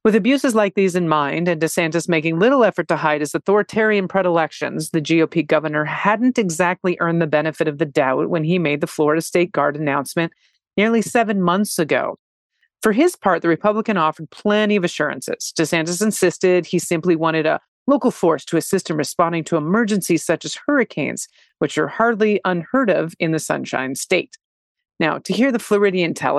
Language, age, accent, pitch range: English, 40-59, American, 160-195 Hz